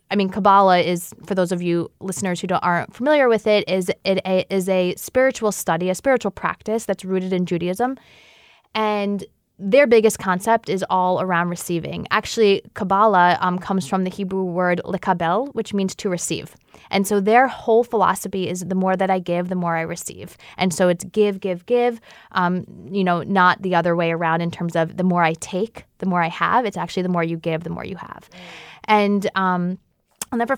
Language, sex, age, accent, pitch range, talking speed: English, female, 20-39, American, 185-215 Hz, 200 wpm